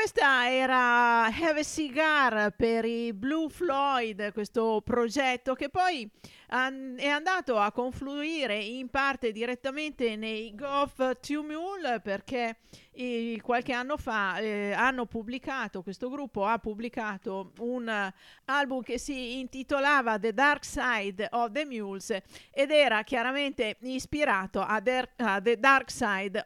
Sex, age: female, 50-69